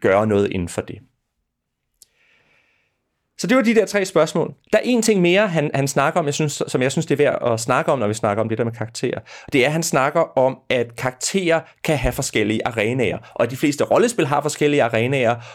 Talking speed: 230 wpm